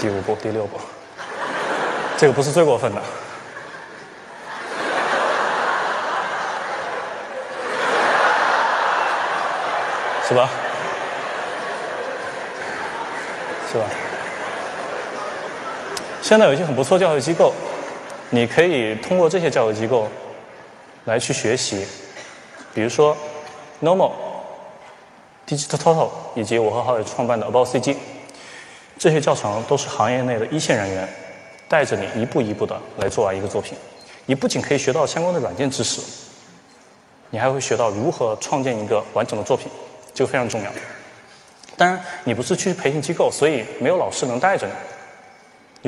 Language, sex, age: Chinese, male, 20-39